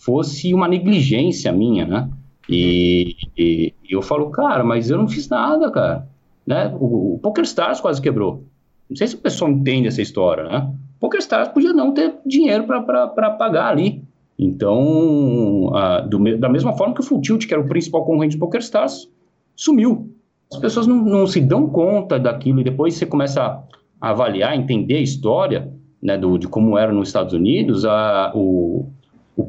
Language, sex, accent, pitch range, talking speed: Portuguese, male, Brazilian, 110-170 Hz, 185 wpm